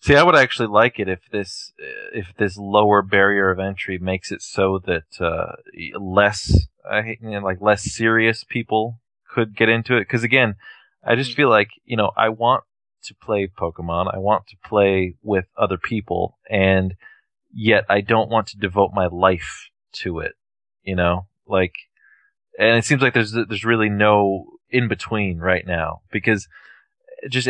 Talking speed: 175 wpm